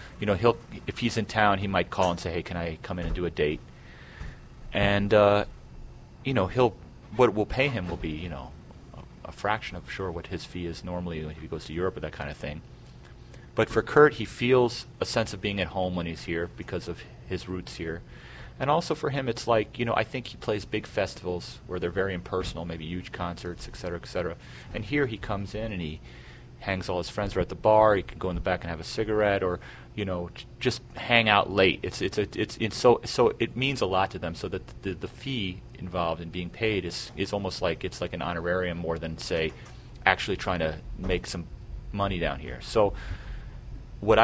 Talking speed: 235 wpm